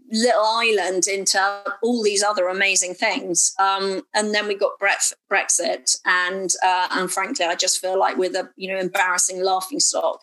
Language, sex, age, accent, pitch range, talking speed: English, female, 30-49, British, 170-200 Hz, 175 wpm